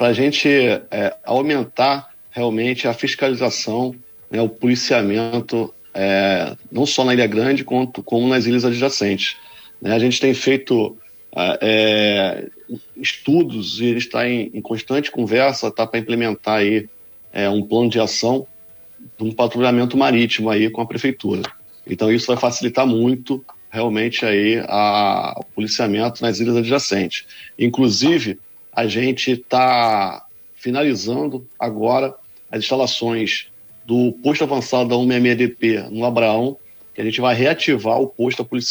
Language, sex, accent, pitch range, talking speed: Portuguese, male, Brazilian, 110-125 Hz, 140 wpm